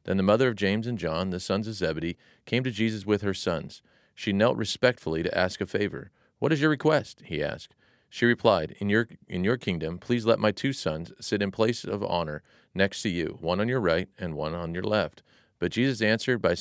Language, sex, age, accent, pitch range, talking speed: English, male, 40-59, American, 90-115 Hz, 230 wpm